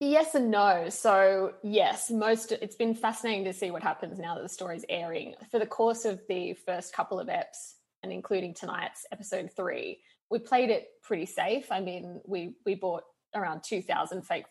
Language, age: English, 20-39